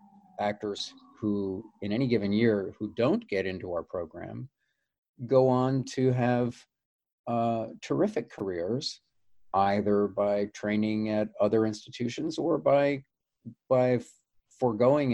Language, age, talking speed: English, 40-59, 115 wpm